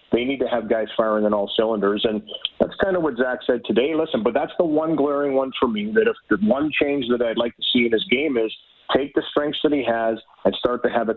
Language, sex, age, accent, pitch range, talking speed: English, male, 40-59, American, 115-145 Hz, 275 wpm